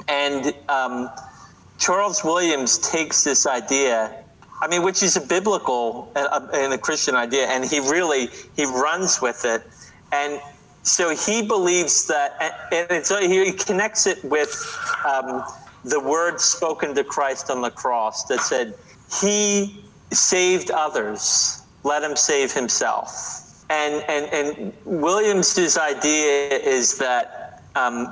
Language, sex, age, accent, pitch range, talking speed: English, male, 40-59, American, 135-185 Hz, 130 wpm